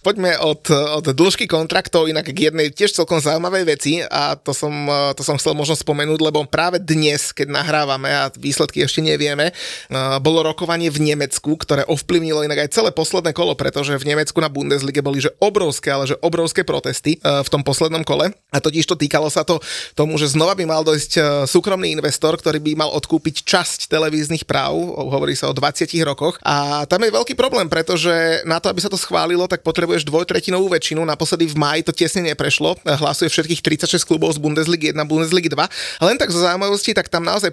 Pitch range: 150-170 Hz